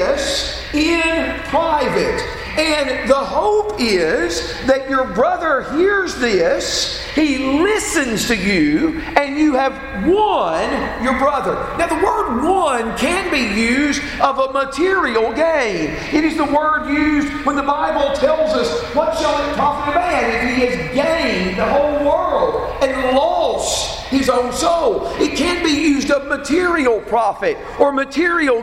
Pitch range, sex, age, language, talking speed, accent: 260-315 Hz, male, 50-69, English, 135 wpm, American